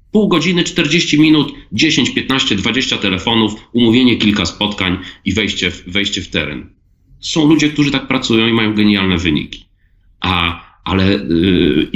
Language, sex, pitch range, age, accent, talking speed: Polish, male, 95-130 Hz, 40-59, native, 145 wpm